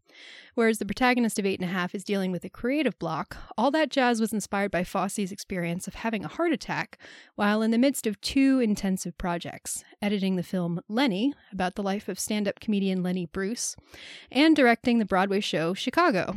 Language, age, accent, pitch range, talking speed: English, 30-49, American, 190-240 Hz, 195 wpm